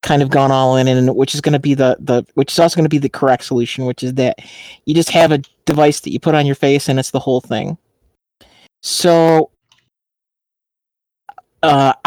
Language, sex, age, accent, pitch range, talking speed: English, male, 40-59, American, 130-165 Hz, 215 wpm